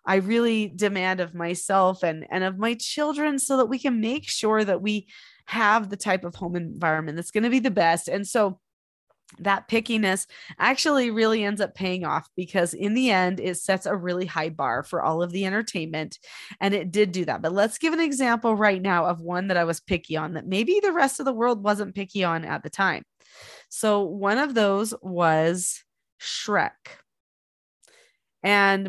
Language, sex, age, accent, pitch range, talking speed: English, female, 20-39, American, 180-235 Hz, 195 wpm